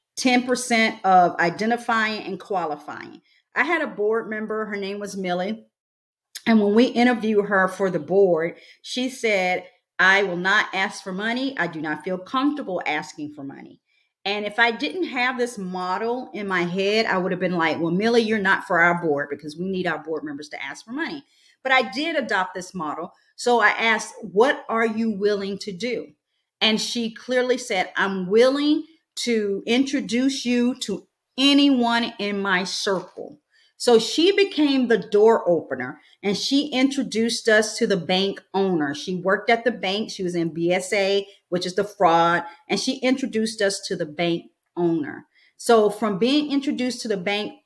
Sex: female